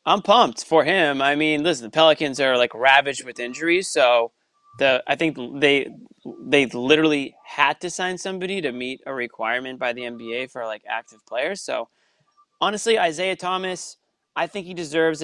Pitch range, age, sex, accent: 125-180 Hz, 20-39, male, American